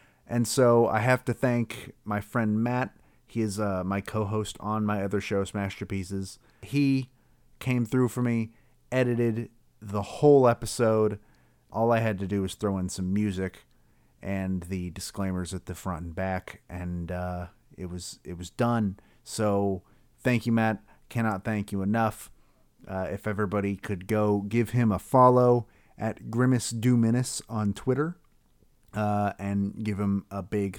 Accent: American